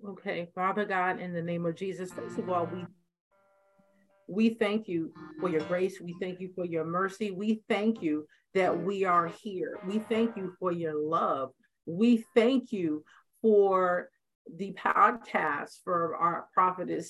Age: 50-69